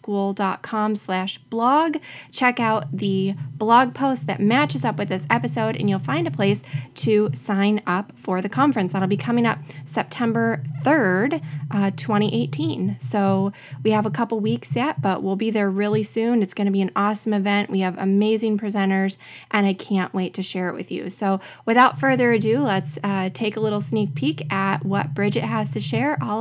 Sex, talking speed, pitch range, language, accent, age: female, 190 wpm, 195-240 Hz, English, American, 20-39